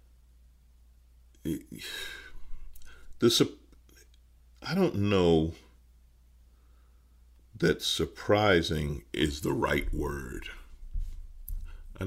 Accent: American